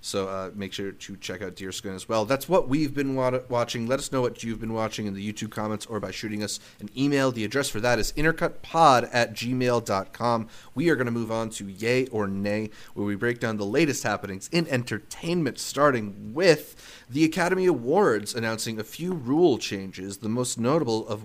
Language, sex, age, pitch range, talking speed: English, male, 30-49, 105-140 Hz, 205 wpm